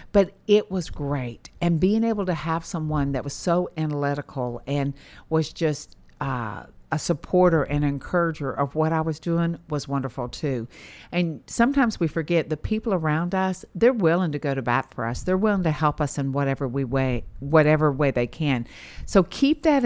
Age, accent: 50-69, American